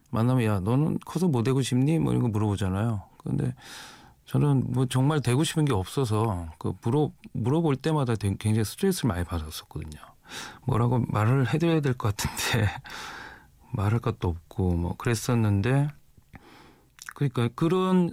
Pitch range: 100-135 Hz